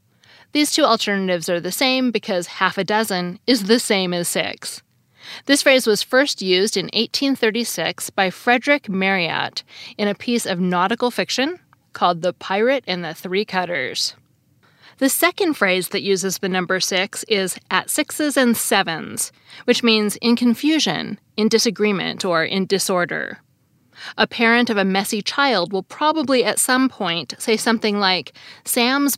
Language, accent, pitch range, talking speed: English, American, 180-245 Hz, 155 wpm